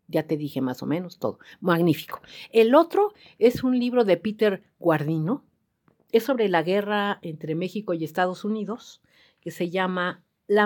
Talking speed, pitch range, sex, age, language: 165 wpm, 160-215 Hz, female, 50-69, Spanish